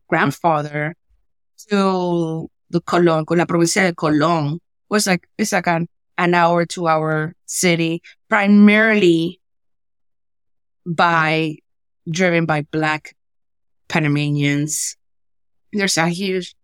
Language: English